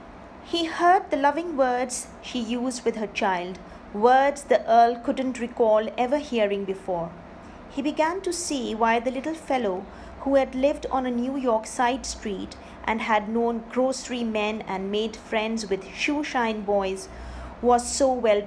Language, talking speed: English, 160 wpm